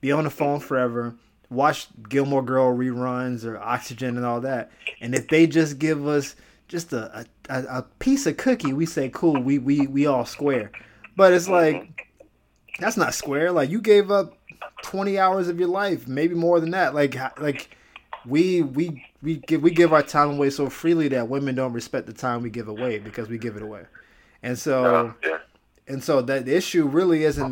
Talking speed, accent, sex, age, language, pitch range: 195 wpm, American, male, 20-39, English, 125-160 Hz